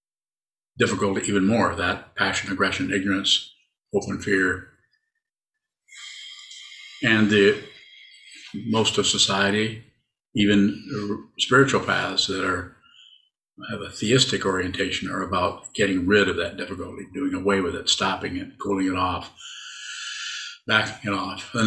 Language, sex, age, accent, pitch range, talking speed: English, male, 50-69, American, 95-115 Hz, 120 wpm